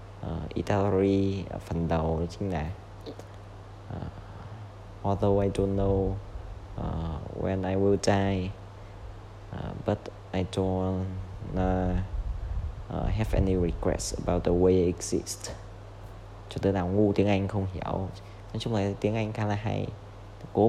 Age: 20-39